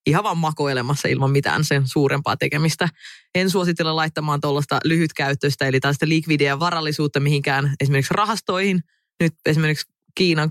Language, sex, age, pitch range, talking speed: Finnish, female, 20-39, 140-165 Hz, 130 wpm